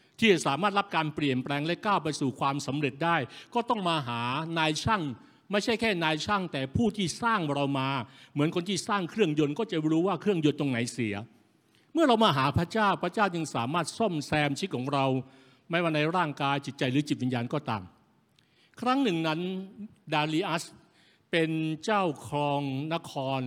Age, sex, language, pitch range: 60-79, male, Thai, 135-180 Hz